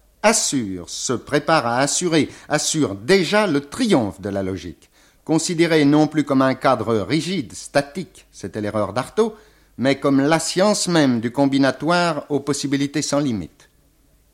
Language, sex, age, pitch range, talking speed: French, male, 60-79, 115-150 Hz, 140 wpm